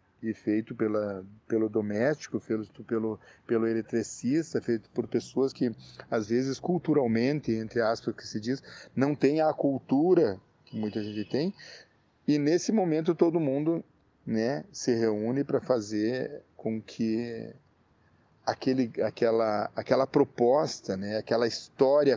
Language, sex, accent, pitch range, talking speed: Portuguese, male, Brazilian, 110-135 Hz, 130 wpm